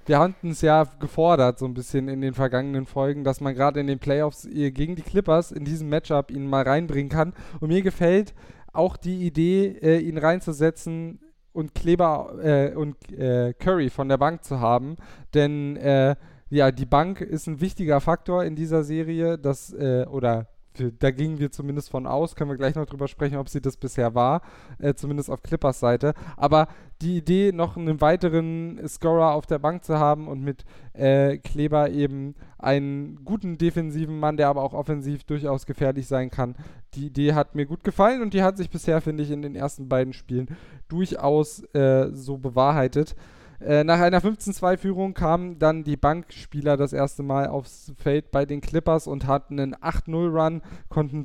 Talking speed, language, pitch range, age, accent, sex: 185 wpm, German, 140-160 Hz, 10-29, German, male